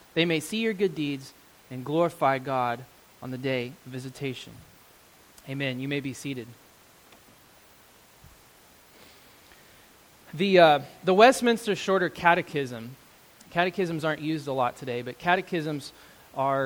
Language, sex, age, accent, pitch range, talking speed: English, male, 20-39, American, 140-185 Hz, 125 wpm